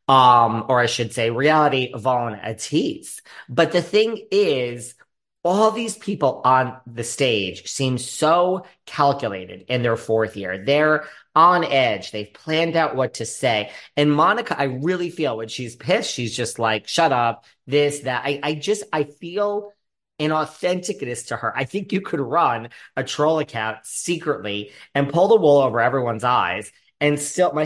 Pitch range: 115-155 Hz